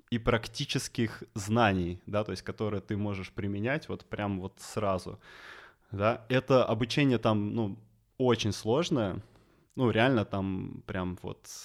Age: 20-39